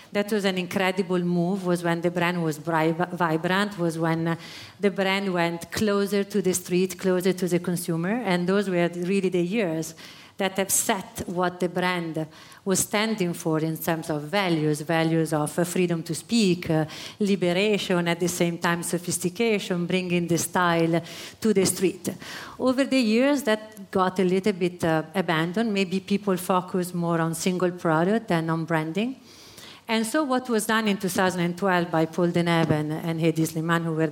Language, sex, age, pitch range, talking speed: English, female, 40-59, 170-200 Hz, 170 wpm